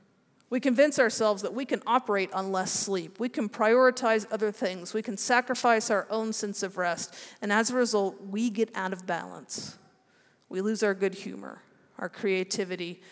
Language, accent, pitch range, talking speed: English, American, 190-225 Hz, 180 wpm